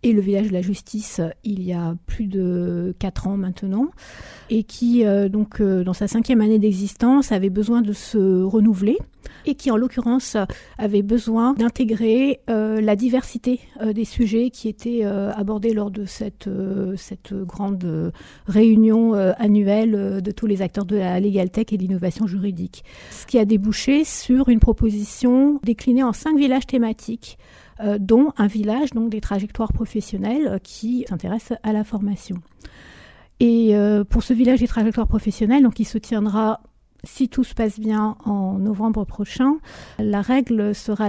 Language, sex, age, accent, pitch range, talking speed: French, female, 50-69, French, 205-235 Hz, 160 wpm